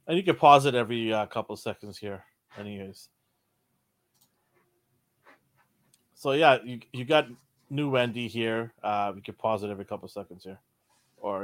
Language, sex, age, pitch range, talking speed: English, male, 30-49, 110-140 Hz, 165 wpm